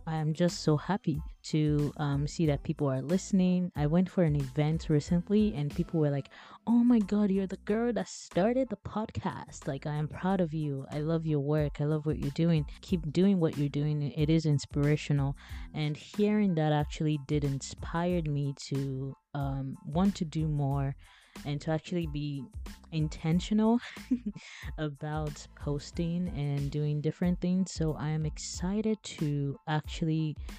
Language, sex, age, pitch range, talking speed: English, female, 20-39, 145-175 Hz, 165 wpm